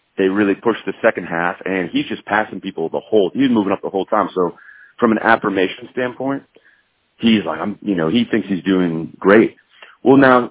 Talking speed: 205 wpm